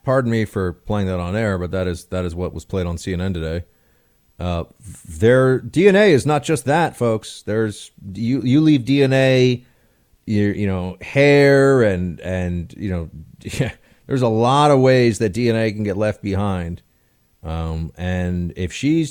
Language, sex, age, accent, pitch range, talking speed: English, male, 30-49, American, 95-135 Hz, 175 wpm